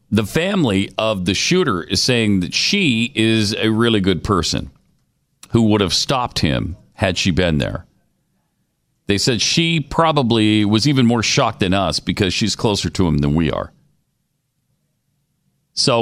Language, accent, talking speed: English, American, 155 wpm